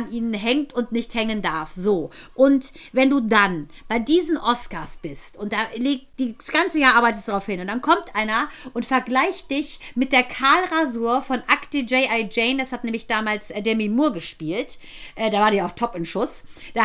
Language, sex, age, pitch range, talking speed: German, female, 50-69, 215-270 Hz, 200 wpm